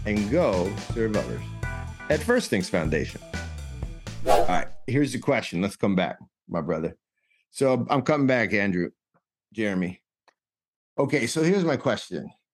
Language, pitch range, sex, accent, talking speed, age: English, 105-140 Hz, male, American, 140 wpm, 50-69